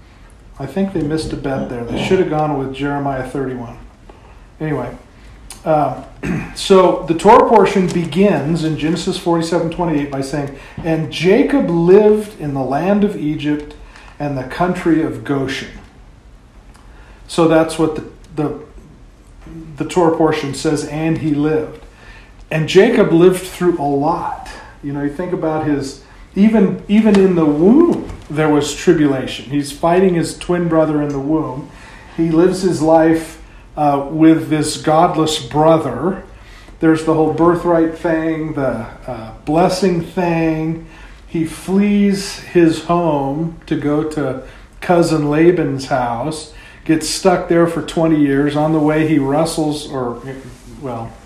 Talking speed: 145 wpm